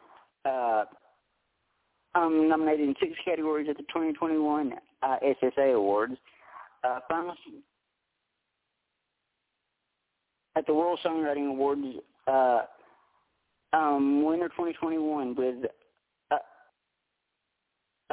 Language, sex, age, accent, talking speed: English, male, 40-59, American, 75 wpm